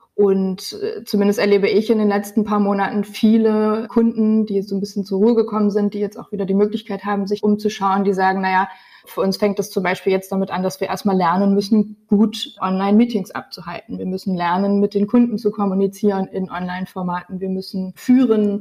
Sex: female